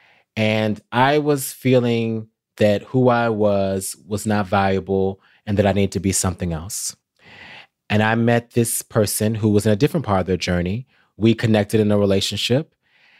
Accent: American